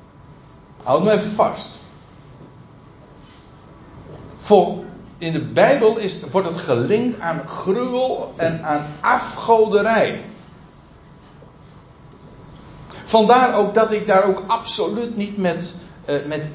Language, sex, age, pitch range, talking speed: Dutch, male, 60-79, 140-205 Hz, 85 wpm